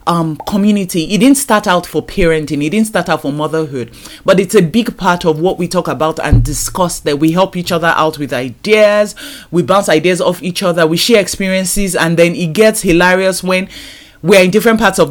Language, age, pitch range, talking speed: English, 30-49, 165-220 Hz, 215 wpm